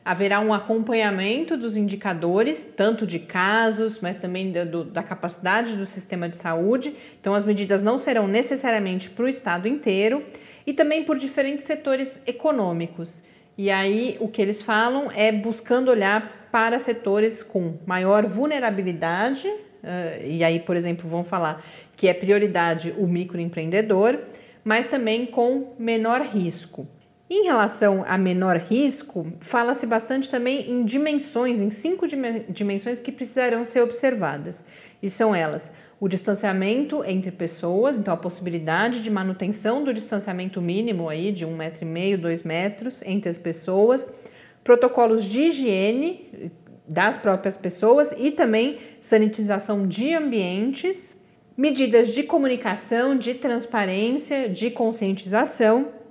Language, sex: Portuguese, female